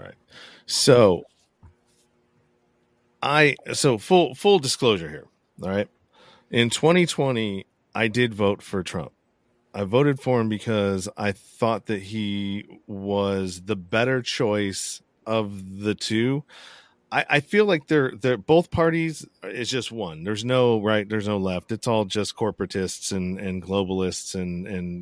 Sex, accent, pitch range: male, American, 95-120 Hz